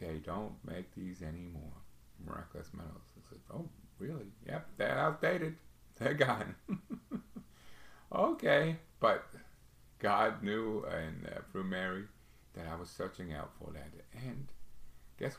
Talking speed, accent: 115 wpm, American